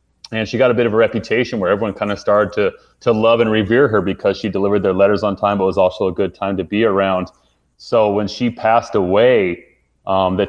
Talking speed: 245 wpm